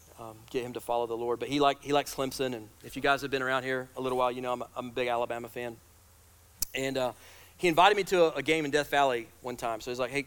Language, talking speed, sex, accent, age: English, 300 wpm, male, American, 30-49